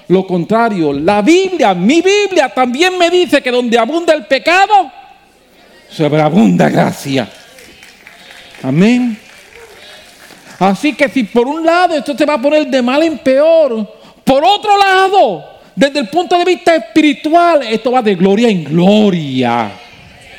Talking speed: 140 wpm